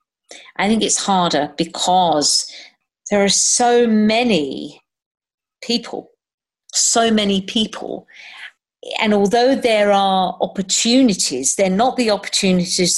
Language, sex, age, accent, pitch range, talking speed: English, female, 50-69, British, 175-225 Hz, 100 wpm